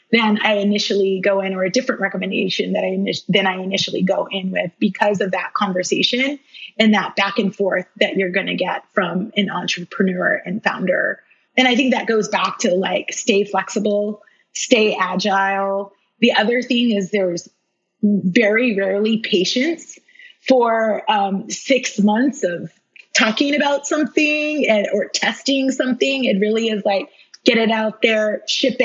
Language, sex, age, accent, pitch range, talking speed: English, female, 30-49, American, 195-270 Hz, 160 wpm